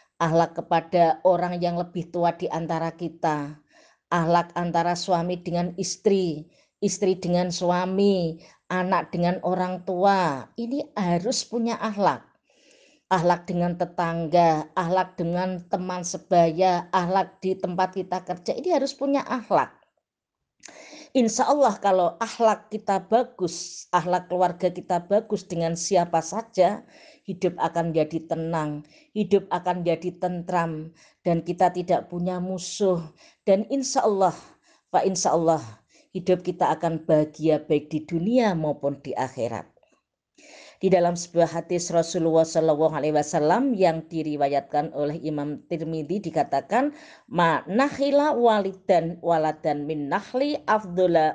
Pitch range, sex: 165-195 Hz, female